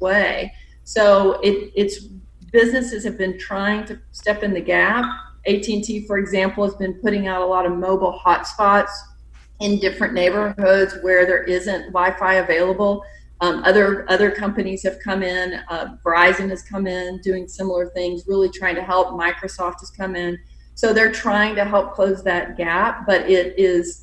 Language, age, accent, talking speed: English, 40-59, American, 175 wpm